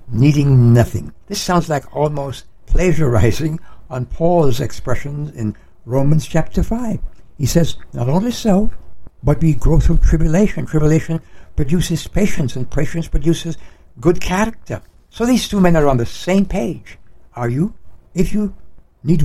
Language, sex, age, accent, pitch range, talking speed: English, male, 60-79, American, 110-165 Hz, 145 wpm